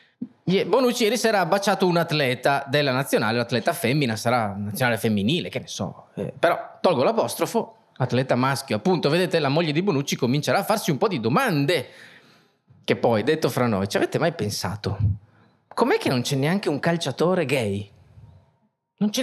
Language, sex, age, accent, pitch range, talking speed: Italian, male, 30-49, native, 115-165 Hz, 175 wpm